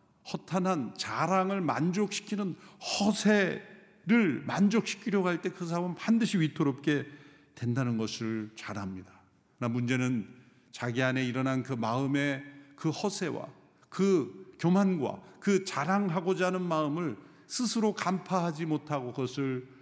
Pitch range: 125-180 Hz